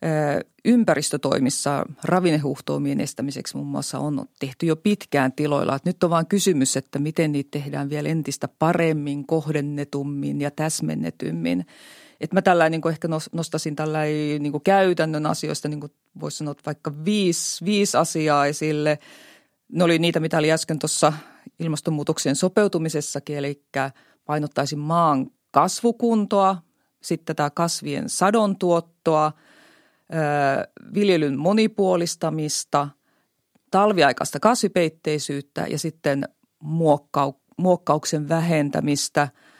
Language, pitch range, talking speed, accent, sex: Finnish, 145-175 Hz, 110 wpm, native, female